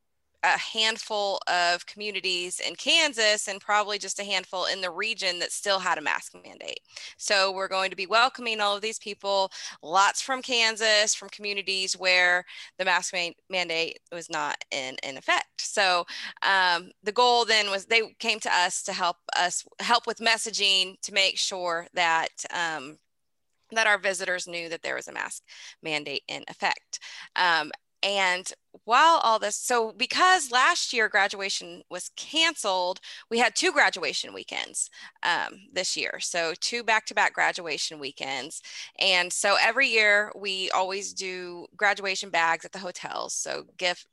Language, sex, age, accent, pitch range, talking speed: English, female, 20-39, American, 180-220 Hz, 160 wpm